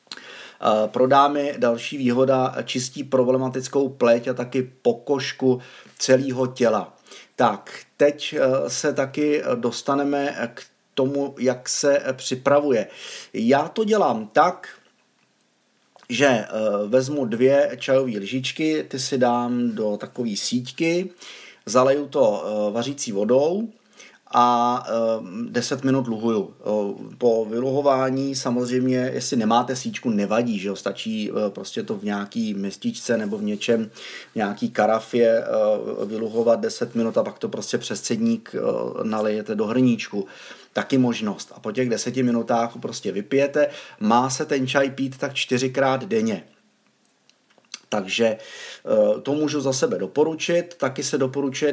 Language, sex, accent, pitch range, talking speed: Czech, male, native, 115-140 Hz, 125 wpm